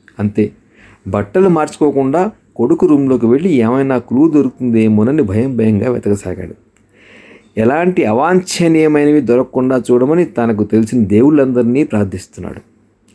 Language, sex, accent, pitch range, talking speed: English, male, Indian, 105-145 Hz, 125 wpm